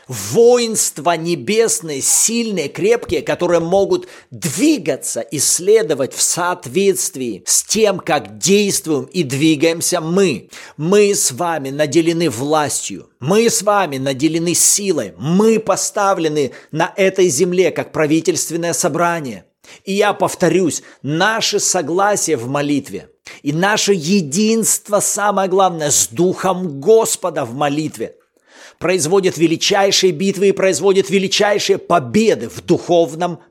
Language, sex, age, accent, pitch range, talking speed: Russian, male, 40-59, native, 155-195 Hz, 110 wpm